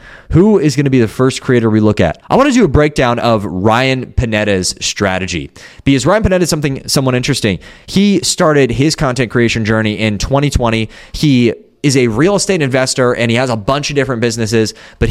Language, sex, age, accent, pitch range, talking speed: English, male, 20-39, American, 110-155 Hz, 205 wpm